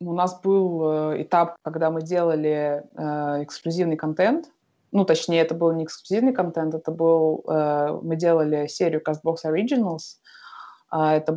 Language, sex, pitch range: Russian, female, 155-170 Hz